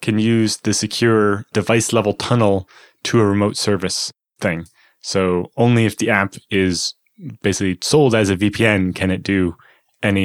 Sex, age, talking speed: male, 20-39, 150 wpm